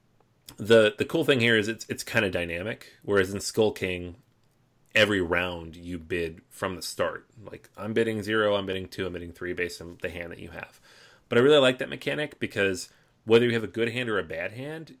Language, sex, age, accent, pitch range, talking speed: English, male, 30-49, American, 90-125 Hz, 225 wpm